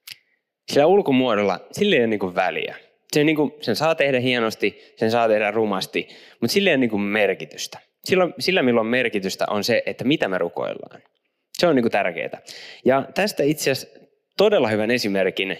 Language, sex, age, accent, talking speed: Finnish, male, 20-39, native, 145 wpm